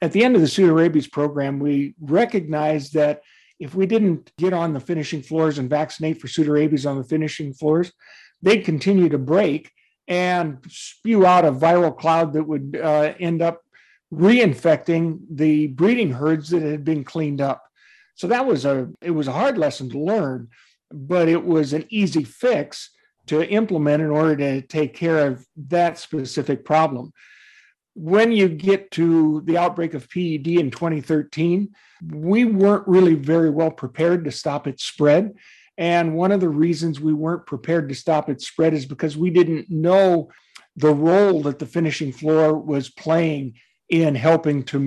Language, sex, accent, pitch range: English, male, American, 150-175 Hz